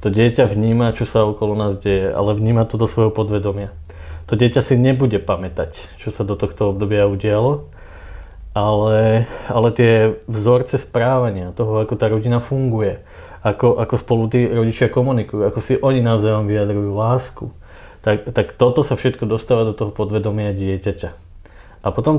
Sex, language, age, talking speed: male, Slovak, 20-39, 160 wpm